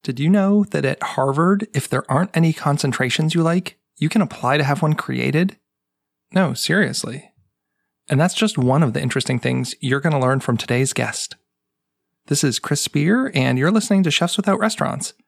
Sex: male